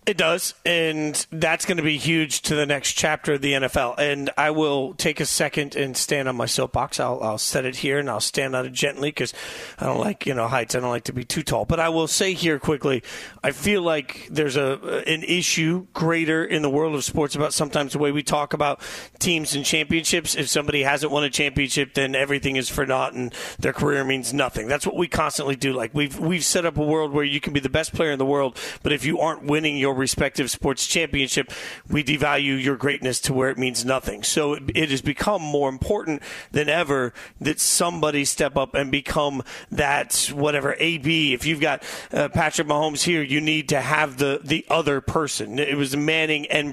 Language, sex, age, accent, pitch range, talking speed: English, male, 40-59, American, 140-155 Hz, 220 wpm